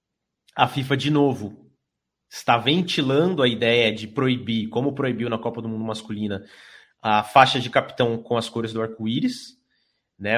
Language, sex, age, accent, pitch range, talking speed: Portuguese, male, 20-39, Brazilian, 105-125 Hz, 155 wpm